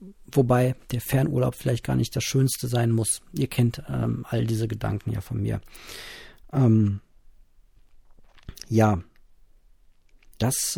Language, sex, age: German, male, 50-69